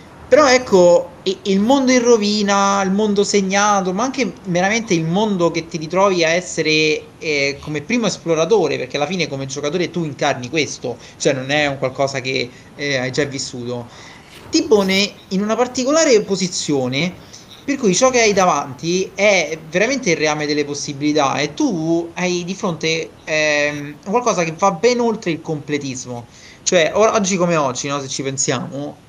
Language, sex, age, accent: Italian, male, 30-49, native